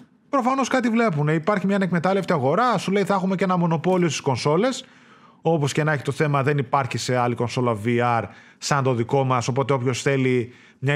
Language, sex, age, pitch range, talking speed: Greek, male, 20-39, 135-210 Hz, 195 wpm